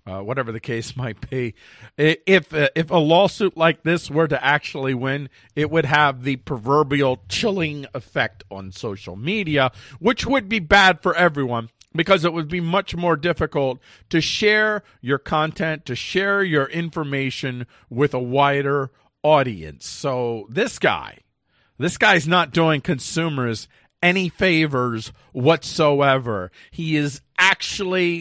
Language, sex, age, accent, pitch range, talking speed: English, male, 50-69, American, 115-160 Hz, 140 wpm